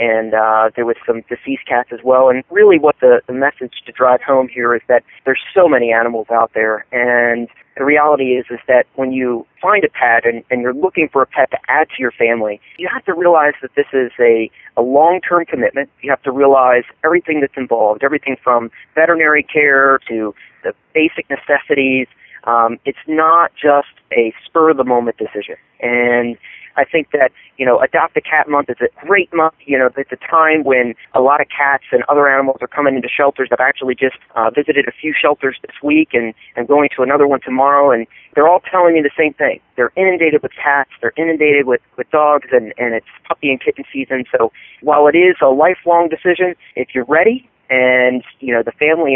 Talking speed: 205 wpm